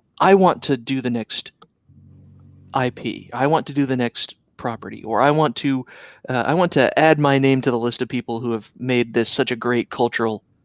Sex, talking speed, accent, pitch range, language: male, 215 wpm, American, 115-135 Hz, English